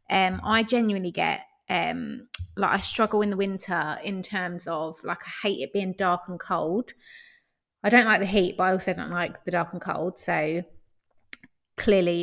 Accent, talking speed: British, 185 wpm